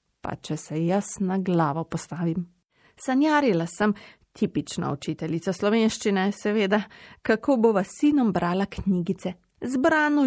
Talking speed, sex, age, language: 105 wpm, female, 30-49, Italian